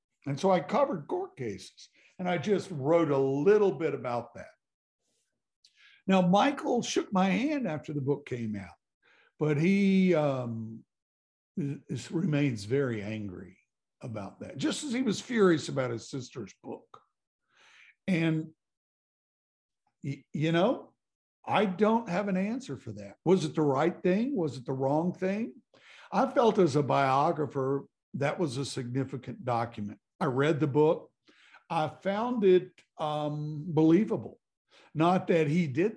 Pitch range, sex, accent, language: 135-180 Hz, male, American, English